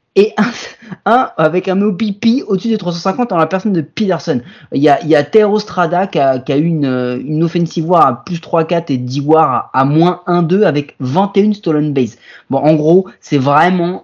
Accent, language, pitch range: French, French, 145-185 Hz